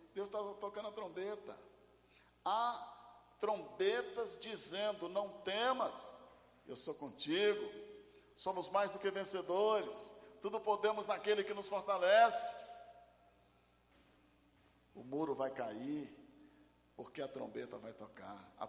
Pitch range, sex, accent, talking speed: 185-260 Hz, male, Brazilian, 110 wpm